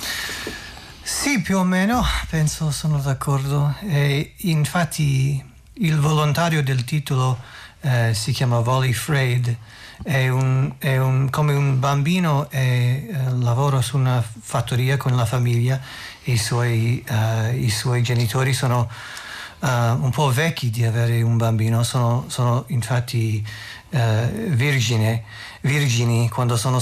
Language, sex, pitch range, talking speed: Italian, male, 120-140 Hz, 130 wpm